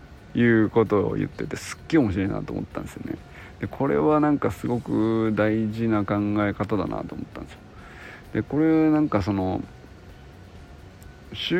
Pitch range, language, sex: 90-110 Hz, Japanese, male